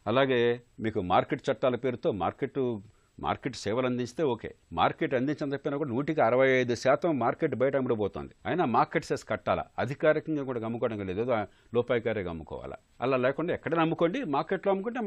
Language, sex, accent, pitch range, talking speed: Telugu, male, native, 110-155 Hz, 130 wpm